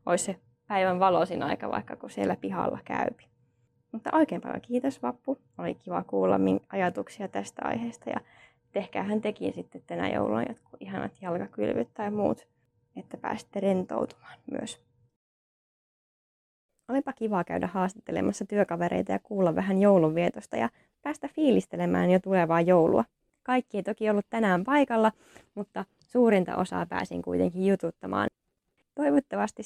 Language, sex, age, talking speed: Finnish, female, 20-39, 130 wpm